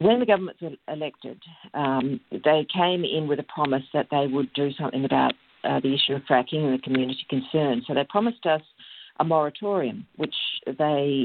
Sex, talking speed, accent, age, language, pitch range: female, 185 wpm, Australian, 50-69, English, 135-165 Hz